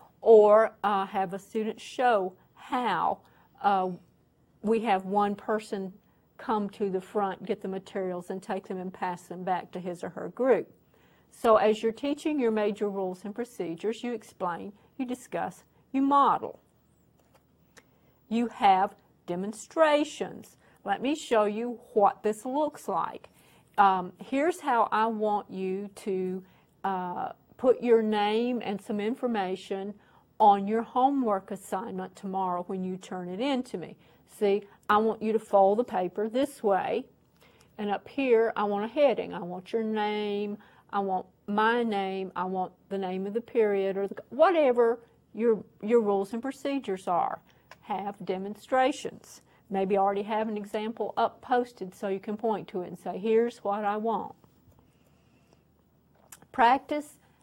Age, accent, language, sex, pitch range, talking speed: 50-69, American, English, female, 195-230 Hz, 155 wpm